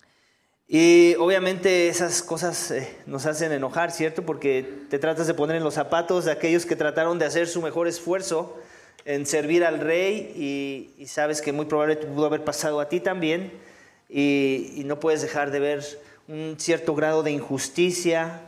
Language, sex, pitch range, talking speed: English, male, 140-175 Hz, 170 wpm